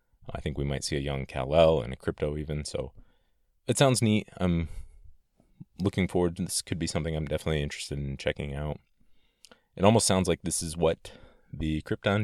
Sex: male